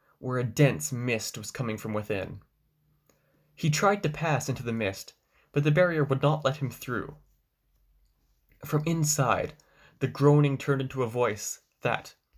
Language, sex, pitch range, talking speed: English, male, 120-150 Hz, 155 wpm